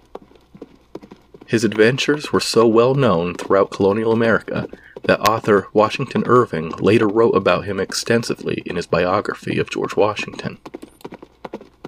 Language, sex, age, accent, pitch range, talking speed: English, male, 30-49, American, 110-130 Hz, 120 wpm